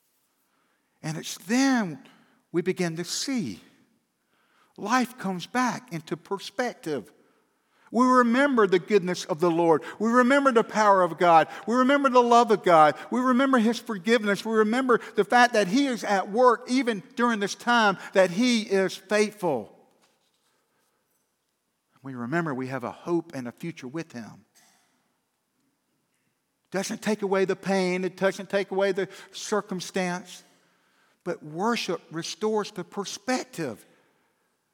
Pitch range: 175-240 Hz